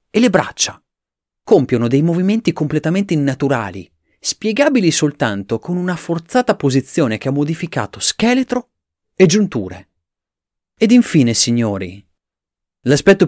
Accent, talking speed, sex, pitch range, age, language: native, 110 wpm, male, 115-185 Hz, 30-49, Italian